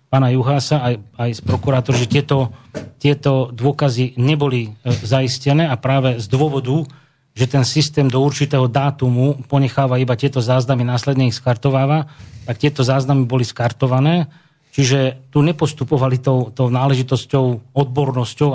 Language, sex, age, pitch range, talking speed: Slovak, male, 30-49, 125-140 Hz, 135 wpm